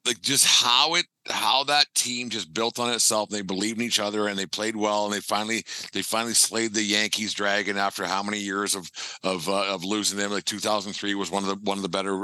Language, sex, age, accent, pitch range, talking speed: English, male, 50-69, American, 95-115 Hz, 245 wpm